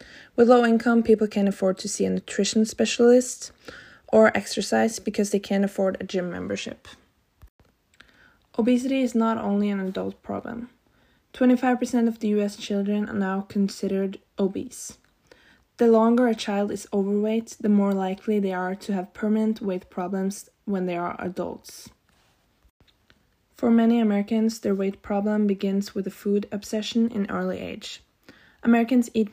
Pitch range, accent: 195-230 Hz, Norwegian